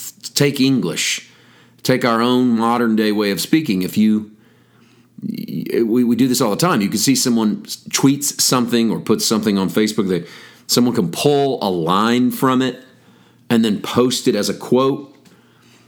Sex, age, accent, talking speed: male, 40-59, American, 170 wpm